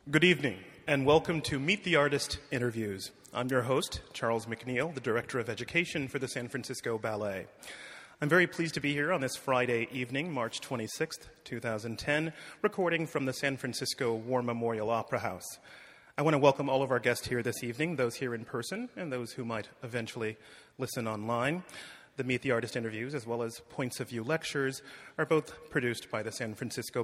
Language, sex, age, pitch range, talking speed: English, male, 30-49, 115-145 Hz, 190 wpm